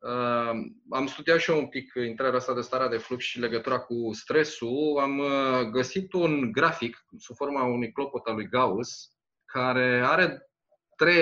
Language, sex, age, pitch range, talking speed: Romanian, male, 20-39, 115-140 Hz, 160 wpm